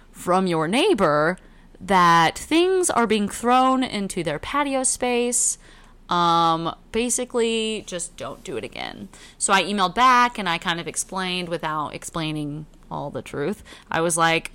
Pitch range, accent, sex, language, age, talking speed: 175-245 Hz, American, female, English, 20-39, 150 wpm